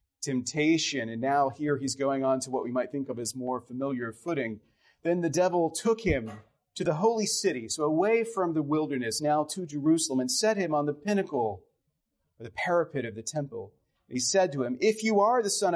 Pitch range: 130-195 Hz